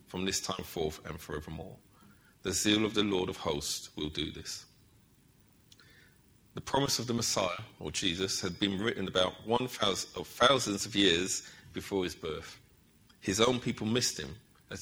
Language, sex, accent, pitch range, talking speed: English, male, British, 95-115 Hz, 160 wpm